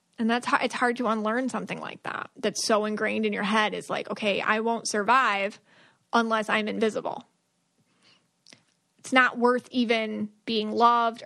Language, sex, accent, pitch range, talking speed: English, female, American, 215-250 Hz, 165 wpm